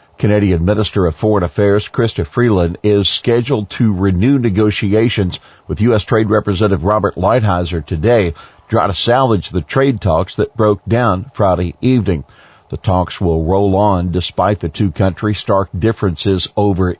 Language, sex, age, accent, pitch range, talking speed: English, male, 50-69, American, 90-115 Hz, 150 wpm